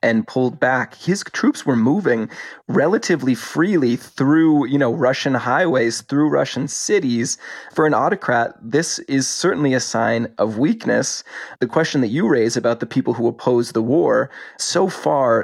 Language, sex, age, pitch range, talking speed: English, male, 20-39, 115-125 Hz, 160 wpm